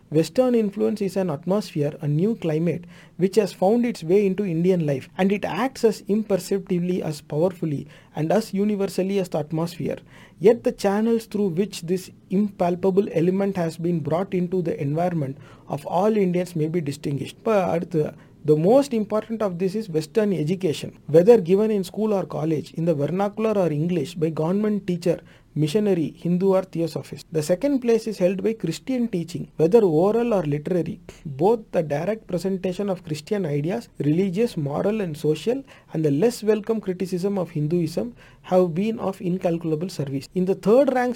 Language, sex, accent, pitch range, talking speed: Tamil, male, native, 160-205 Hz, 170 wpm